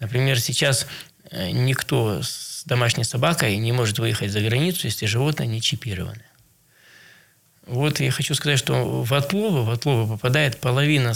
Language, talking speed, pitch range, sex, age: Russian, 135 wpm, 110-140 Hz, male, 20-39